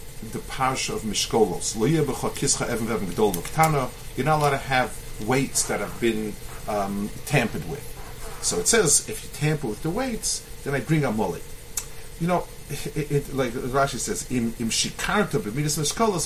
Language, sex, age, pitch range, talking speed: English, male, 40-59, 120-160 Hz, 135 wpm